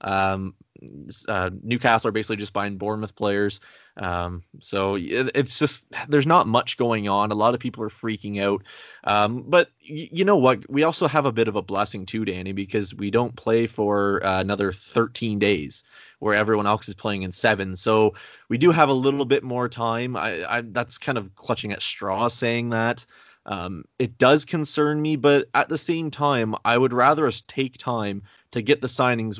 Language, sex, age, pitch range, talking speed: English, male, 20-39, 100-130 Hz, 200 wpm